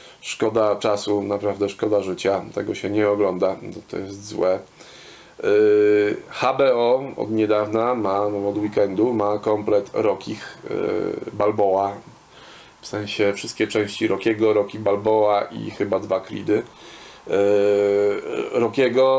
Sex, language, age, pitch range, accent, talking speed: male, Polish, 20-39, 105-125 Hz, native, 120 wpm